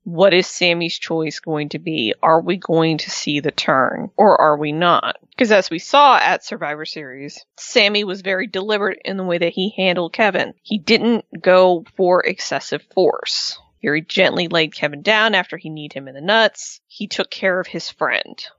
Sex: female